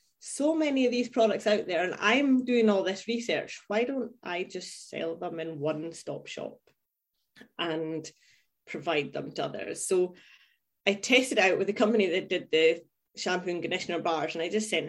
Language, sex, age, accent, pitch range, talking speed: English, female, 30-49, British, 165-225 Hz, 180 wpm